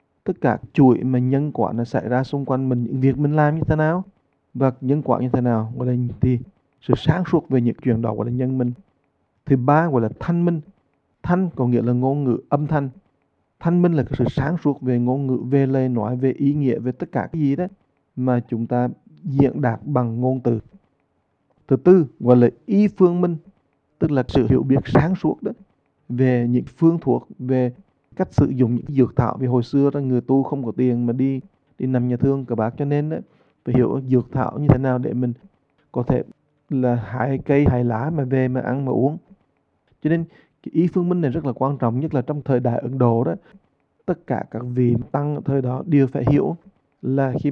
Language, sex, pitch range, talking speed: English, male, 125-145 Hz, 230 wpm